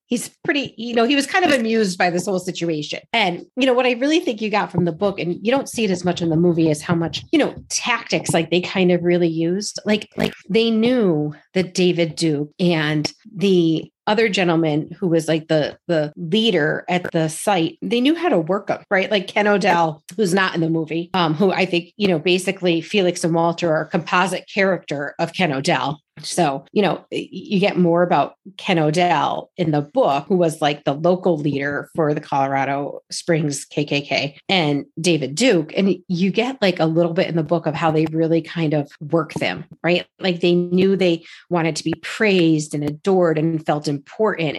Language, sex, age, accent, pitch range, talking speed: English, female, 30-49, American, 160-195 Hz, 210 wpm